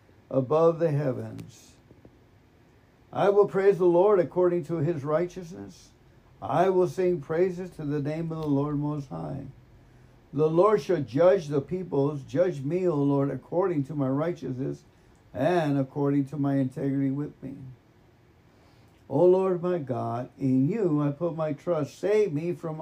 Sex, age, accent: male, 60-79, American